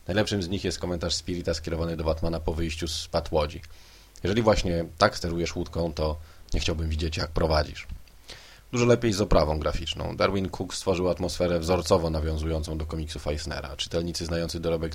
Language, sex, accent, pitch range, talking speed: Polish, male, native, 80-90 Hz, 165 wpm